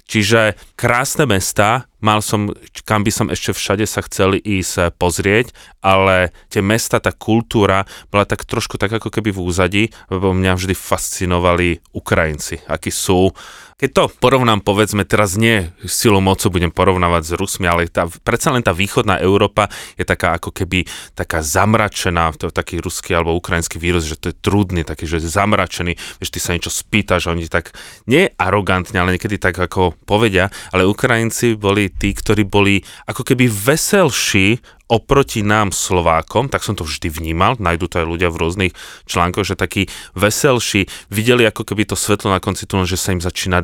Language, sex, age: Slovak, male, 30-49